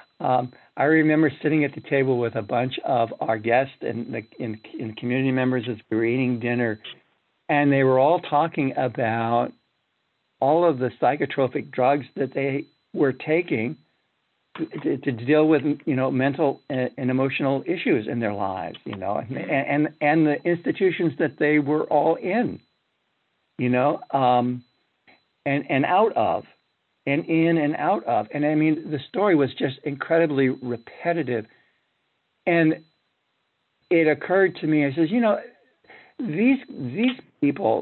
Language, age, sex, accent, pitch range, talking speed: English, 60-79, male, American, 125-165 Hz, 155 wpm